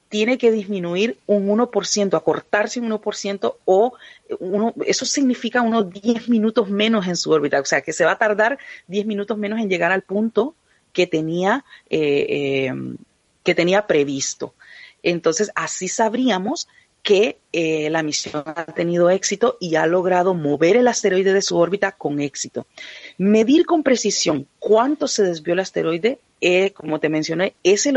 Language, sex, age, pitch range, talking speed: Spanish, female, 40-59, 165-220 Hz, 150 wpm